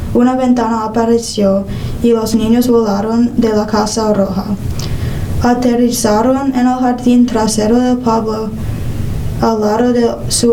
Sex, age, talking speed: female, 10-29, 125 wpm